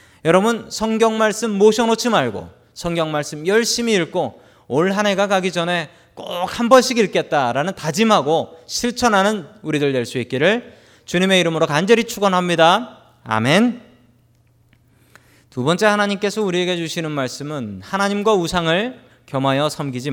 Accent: native